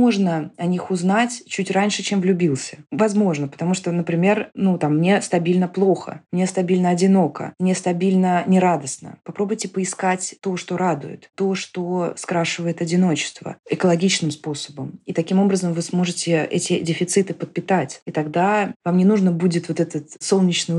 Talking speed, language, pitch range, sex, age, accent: 145 wpm, Russian, 160-195 Hz, female, 20-39, native